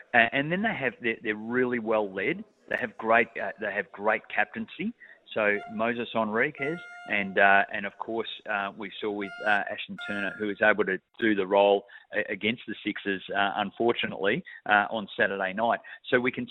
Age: 30-49